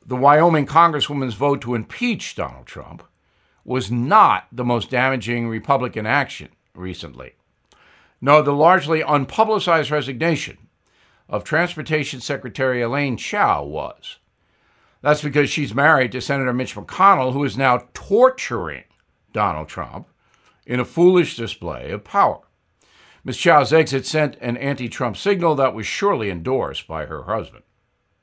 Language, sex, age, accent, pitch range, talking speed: English, male, 60-79, American, 120-155 Hz, 130 wpm